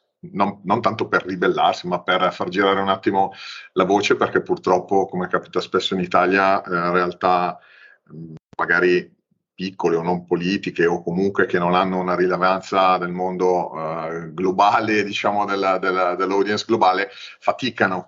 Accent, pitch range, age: native, 90-95 Hz, 40-59